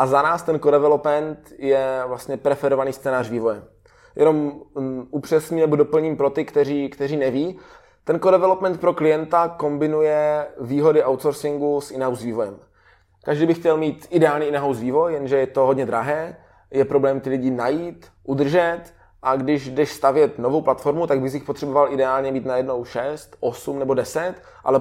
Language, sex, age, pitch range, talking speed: Czech, male, 20-39, 135-155 Hz, 155 wpm